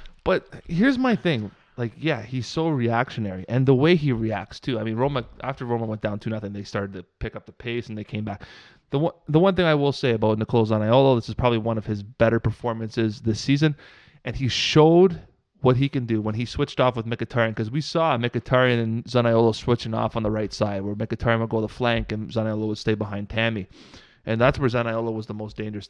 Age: 20-39